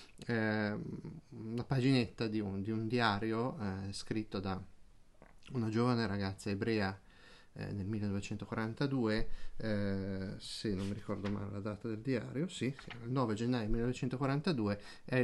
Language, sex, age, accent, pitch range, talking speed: Italian, male, 30-49, native, 100-120 Hz, 140 wpm